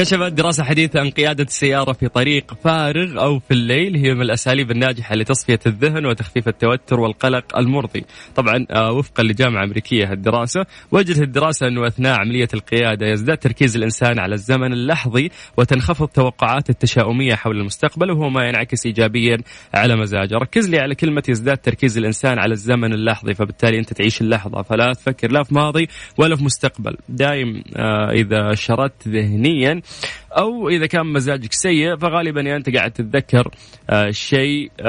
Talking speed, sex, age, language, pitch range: 150 wpm, male, 20-39, Arabic, 115-155 Hz